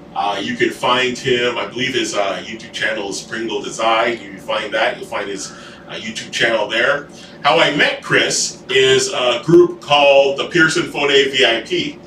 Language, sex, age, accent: English, male, 30-49, American